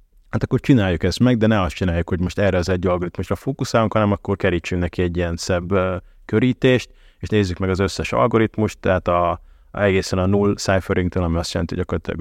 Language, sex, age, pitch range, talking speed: Hungarian, male, 30-49, 90-110 Hz, 210 wpm